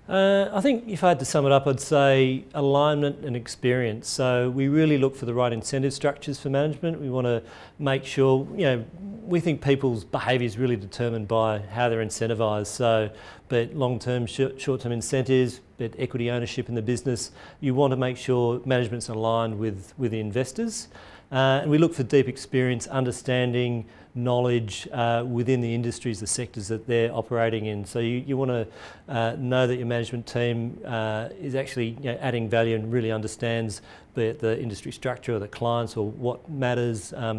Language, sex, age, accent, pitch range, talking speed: English, male, 40-59, Australian, 115-130 Hz, 180 wpm